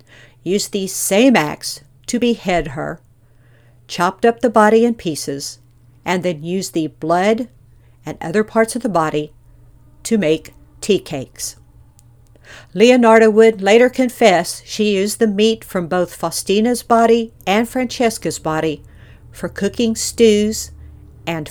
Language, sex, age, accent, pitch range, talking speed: English, female, 50-69, American, 160-220 Hz, 130 wpm